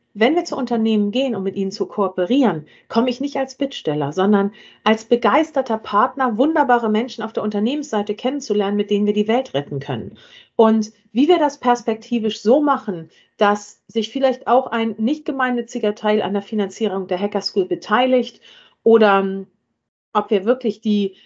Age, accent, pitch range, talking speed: 40-59, German, 200-245 Hz, 165 wpm